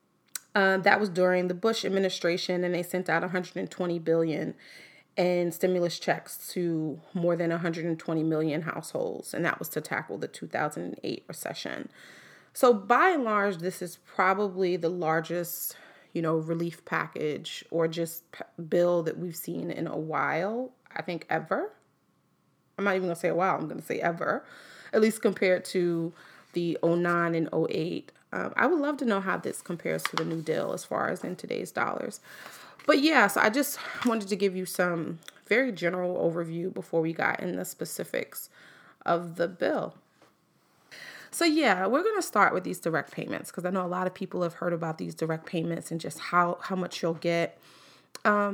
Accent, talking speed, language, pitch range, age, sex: American, 180 wpm, English, 170-200 Hz, 30-49, female